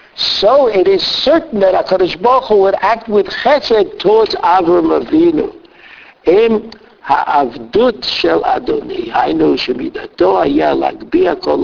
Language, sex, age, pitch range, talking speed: English, male, 60-79, 190-315 Hz, 125 wpm